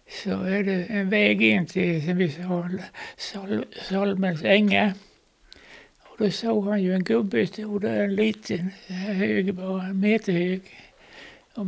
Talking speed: 150 wpm